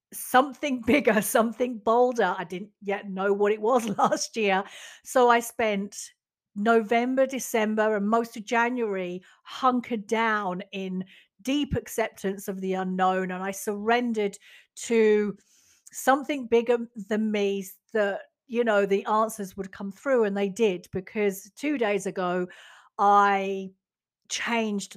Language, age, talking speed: English, 50-69, 130 wpm